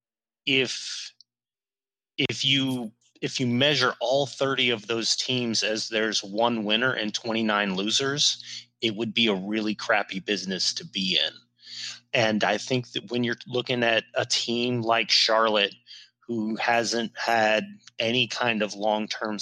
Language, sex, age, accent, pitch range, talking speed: English, male, 30-49, American, 110-125 Hz, 145 wpm